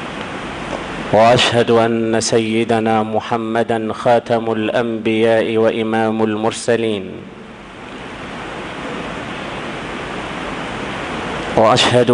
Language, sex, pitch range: Swahili, male, 115-125 Hz